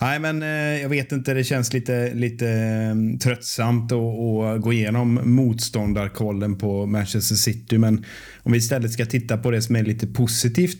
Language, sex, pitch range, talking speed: Swedish, male, 105-120 Hz, 165 wpm